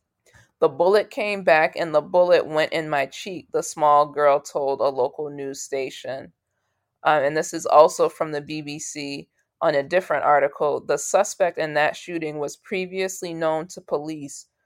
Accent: American